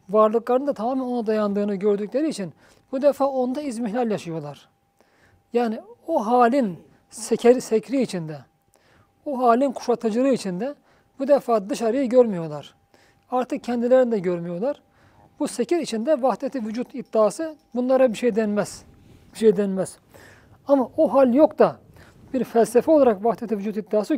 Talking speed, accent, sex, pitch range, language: 135 wpm, native, male, 205-255 Hz, Turkish